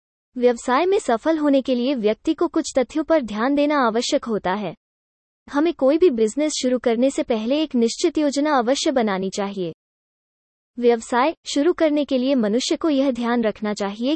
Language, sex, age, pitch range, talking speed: English, female, 20-39, 230-300 Hz, 175 wpm